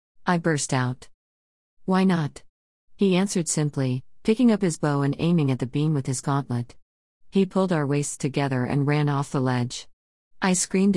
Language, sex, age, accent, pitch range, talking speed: English, female, 50-69, American, 130-170 Hz, 175 wpm